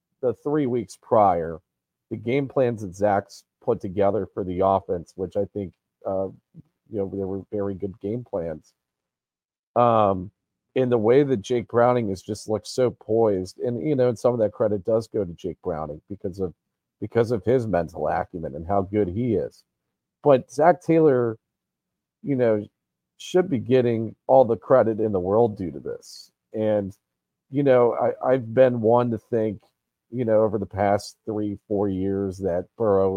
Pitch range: 95-115 Hz